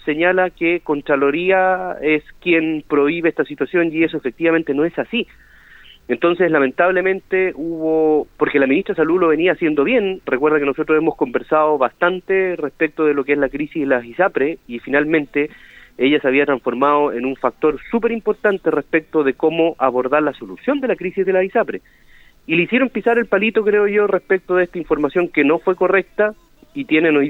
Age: 30-49